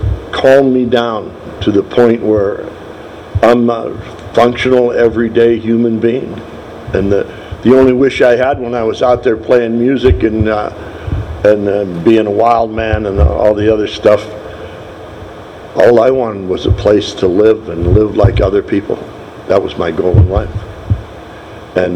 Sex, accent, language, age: male, American, English, 60-79